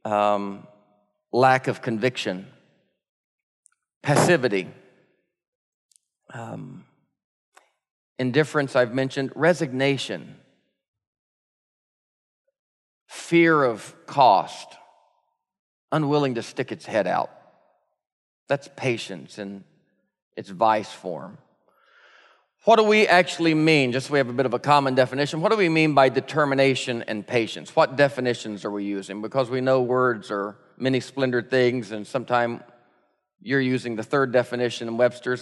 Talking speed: 120 wpm